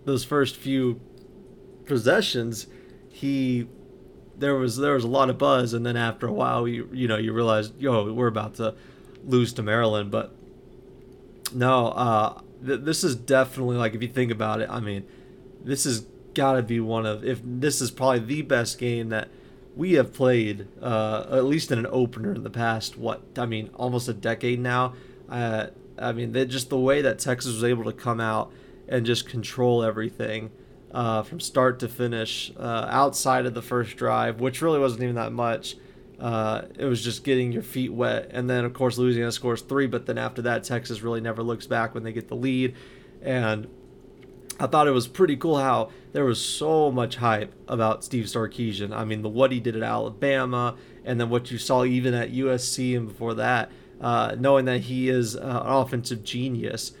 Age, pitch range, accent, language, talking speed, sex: 30-49, 115-130 Hz, American, English, 195 wpm, male